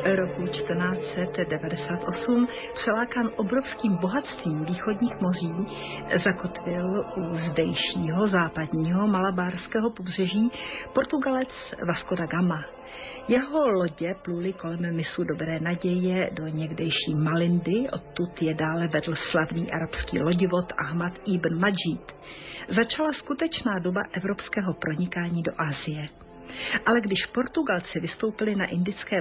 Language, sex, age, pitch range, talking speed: Slovak, female, 50-69, 170-225 Hz, 105 wpm